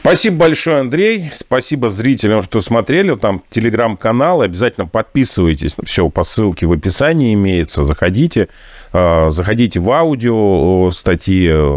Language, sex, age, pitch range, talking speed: Russian, male, 30-49, 85-110 Hz, 110 wpm